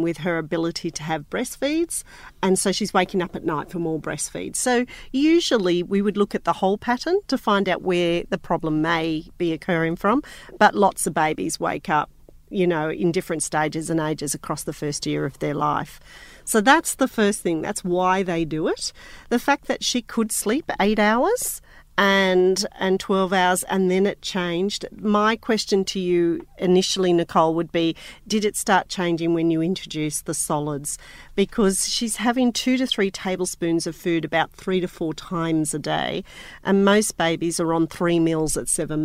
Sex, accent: female, Australian